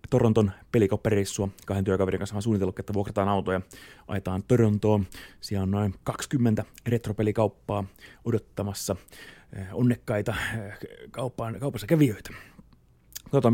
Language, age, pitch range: Finnish, 30-49, 100-120 Hz